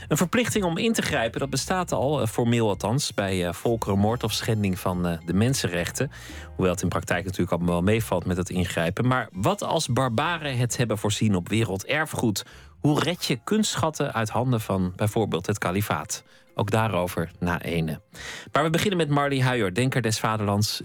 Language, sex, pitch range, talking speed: Dutch, male, 95-130 Hz, 175 wpm